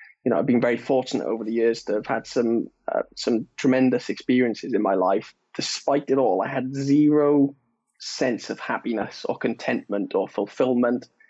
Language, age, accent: English, 20-39, British